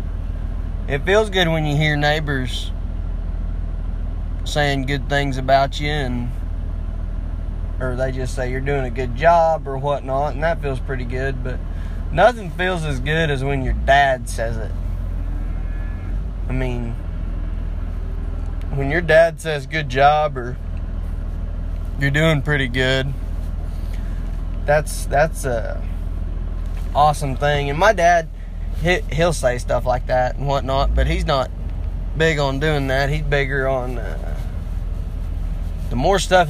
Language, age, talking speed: English, 20-39, 135 wpm